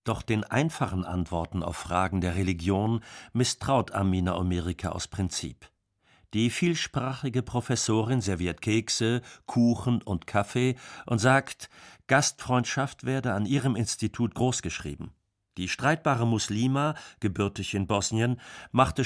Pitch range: 100-125 Hz